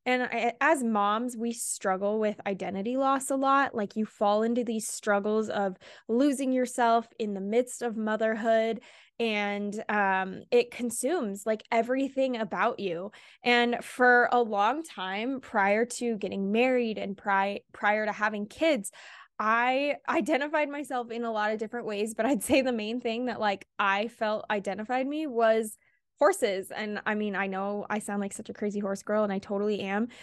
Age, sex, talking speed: 10-29, female, 170 wpm